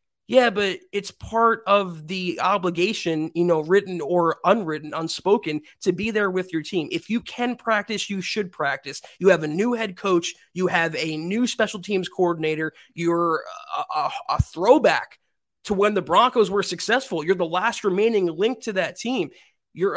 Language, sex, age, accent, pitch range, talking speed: English, male, 20-39, American, 170-220 Hz, 175 wpm